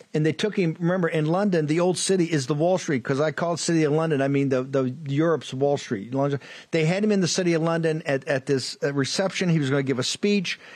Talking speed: 255 wpm